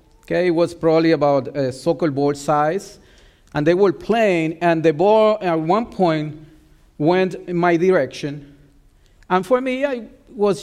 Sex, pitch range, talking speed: male, 140-185 Hz, 160 wpm